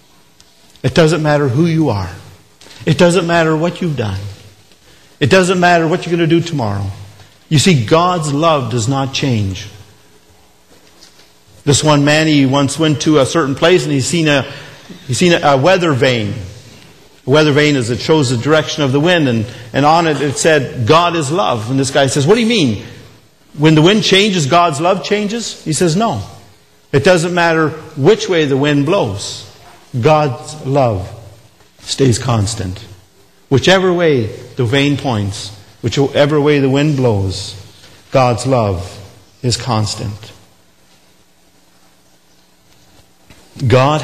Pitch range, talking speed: 105-160 Hz, 150 wpm